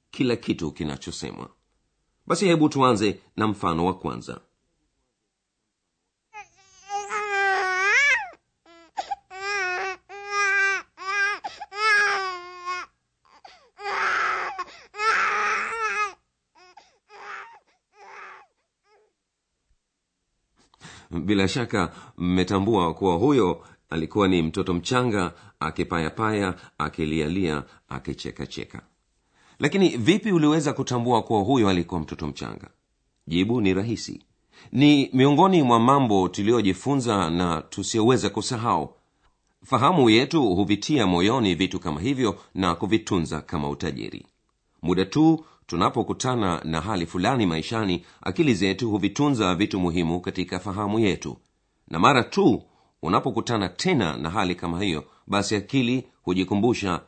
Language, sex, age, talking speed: Swahili, male, 40-59, 90 wpm